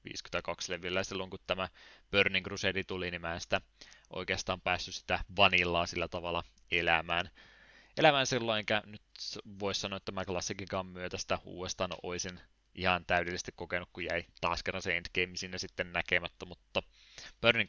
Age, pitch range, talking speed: 20-39, 90-100 Hz, 155 wpm